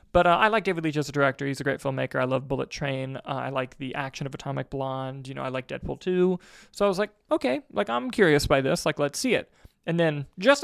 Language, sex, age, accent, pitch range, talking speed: English, male, 20-39, American, 135-175 Hz, 270 wpm